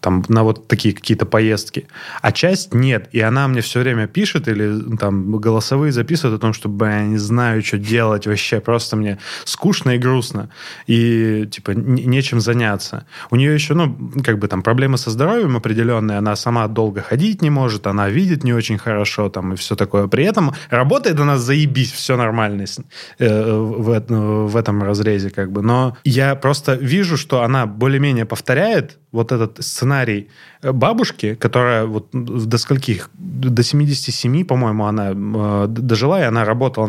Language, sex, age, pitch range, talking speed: Russian, male, 20-39, 110-140 Hz, 160 wpm